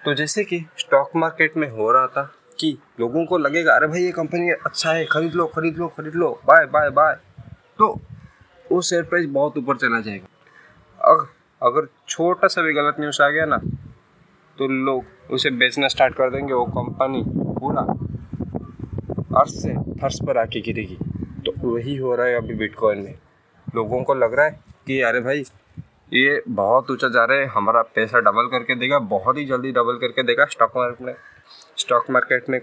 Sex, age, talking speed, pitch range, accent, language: male, 20-39, 185 wpm, 125-165 Hz, native, Hindi